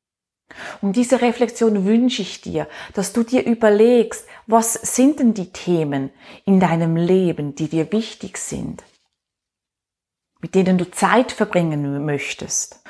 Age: 30-49